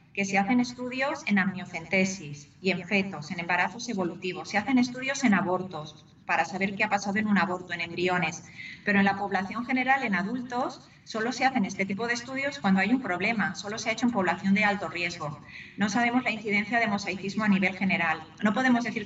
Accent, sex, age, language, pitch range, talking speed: Spanish, female, 30-49, Spanish, 185-235 Hz, 210 wpm